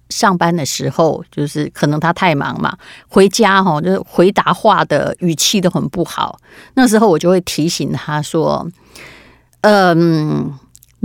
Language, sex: Chinese, female